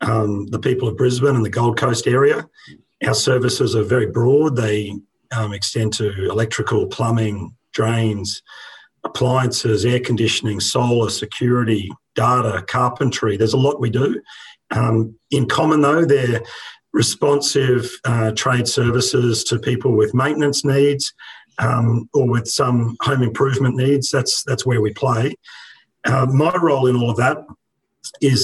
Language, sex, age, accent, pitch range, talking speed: English, male, 40-59, Australian, 120-140 Hz, 145 wpm